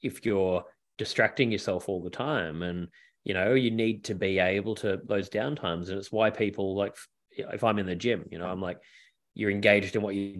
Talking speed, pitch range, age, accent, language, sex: 215 wpm, 95-110 Hz, 30-49, Australian, English, male